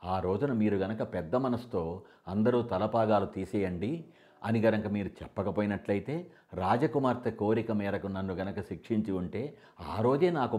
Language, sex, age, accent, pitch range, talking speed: Telugu, male, 50-69, native, 90-110 Hz, 130 wpm